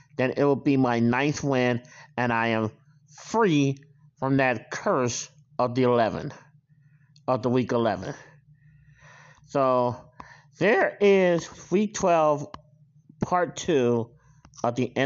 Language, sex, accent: English, male, American